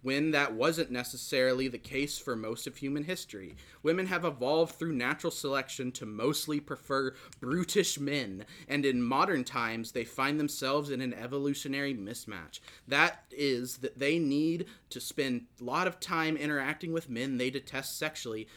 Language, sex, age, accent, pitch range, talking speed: English, male, 30-49, American, 125-160 Hz, 160 wpm